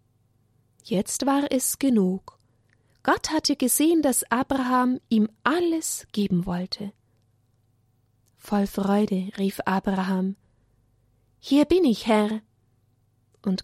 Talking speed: 95 wpm